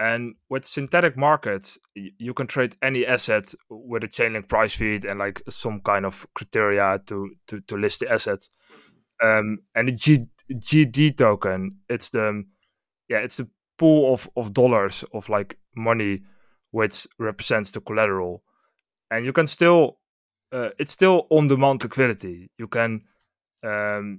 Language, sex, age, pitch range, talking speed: English, male, 20-39, 105-135 Hz, 150 wpm